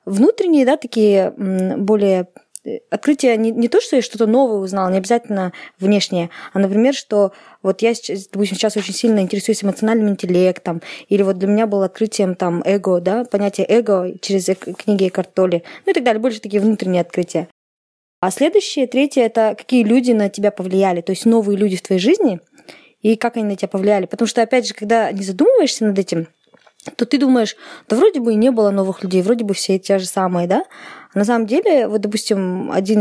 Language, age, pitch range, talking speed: Russian, 20-39, 195-230 Hz, 195 wpm